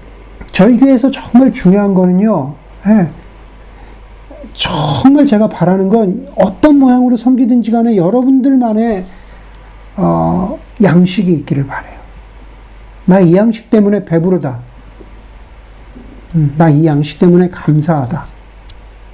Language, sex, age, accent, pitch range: Korean, male, 50-69, native, 150-235 Hz